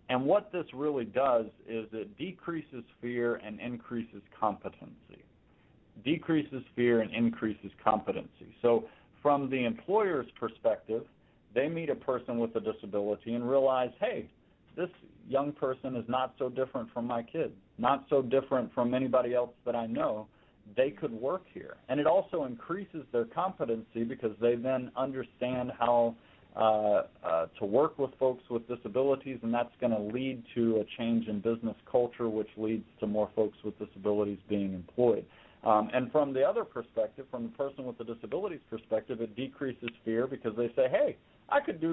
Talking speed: 165 wpm